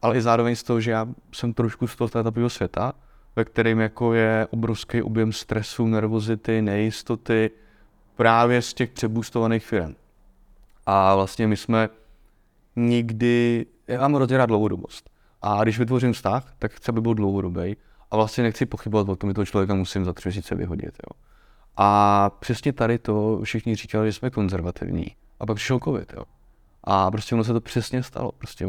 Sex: male